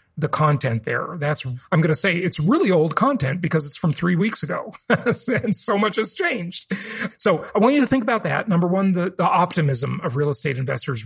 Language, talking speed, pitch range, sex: English, 215 wpm, 140-180 Hz, male